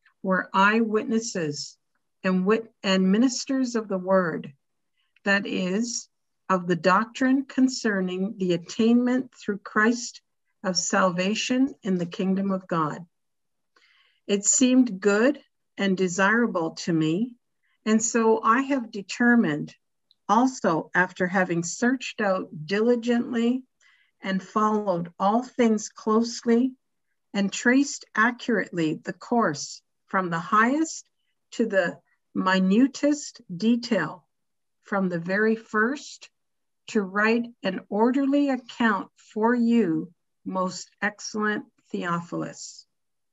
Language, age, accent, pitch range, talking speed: English, 50-69, American, 190-245 Hz, 105 wpm